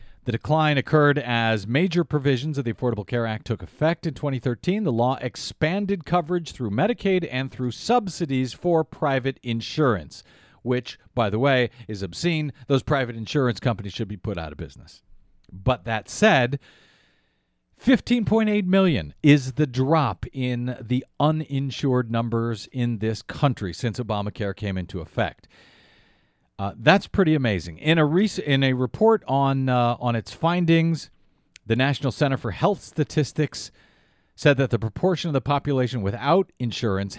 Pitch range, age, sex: 110-155 Hz, 50-69, male